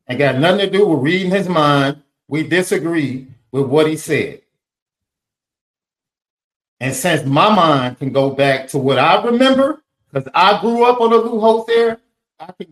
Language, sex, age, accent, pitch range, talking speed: English, male, 40-59, American, 115-155 Hz, 170 wpm